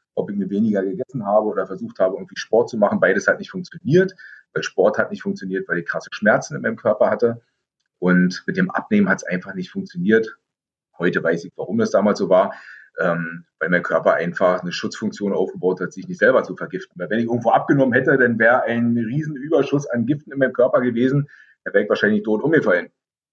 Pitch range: 110-155 Hz